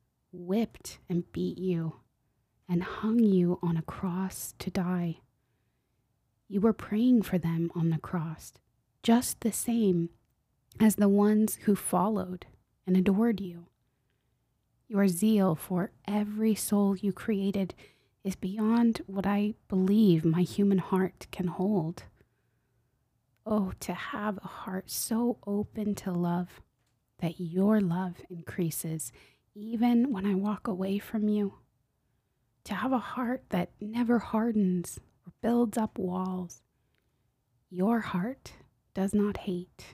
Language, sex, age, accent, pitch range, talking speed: English, female, 20-39, American, 165-210 Hz, 125 wpm